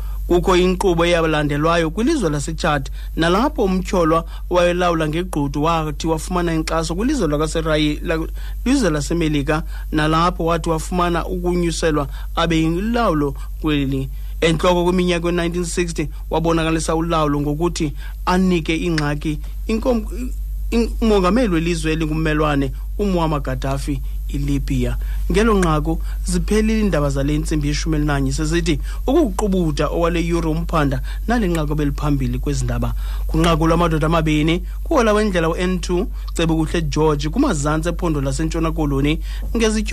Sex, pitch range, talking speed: male, 145-175 Hz, 105 wpm